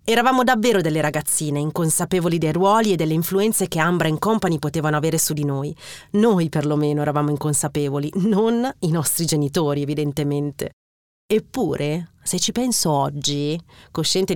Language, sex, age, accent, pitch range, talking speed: Italian, female, 30-49, native, 145-190 Hz, 140 wpm